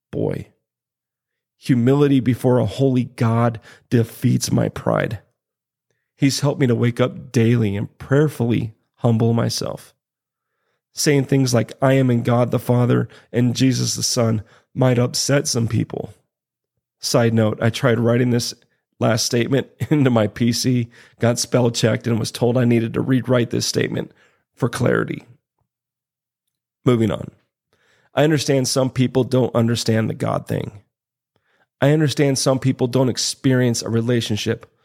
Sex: male